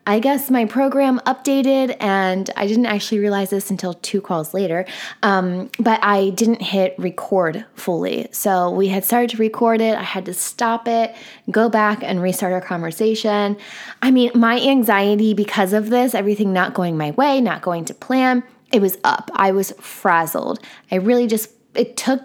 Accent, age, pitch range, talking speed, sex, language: American, 20-39, 195-250 Hz, 180 wpm, female, English